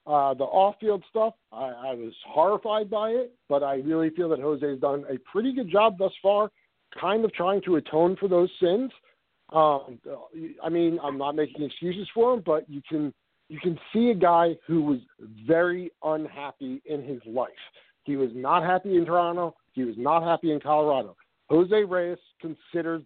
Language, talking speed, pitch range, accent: English, 185 wpm, 145-180 Hz, American